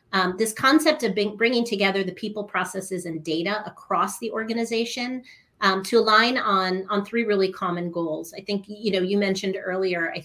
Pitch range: 175-200 Hz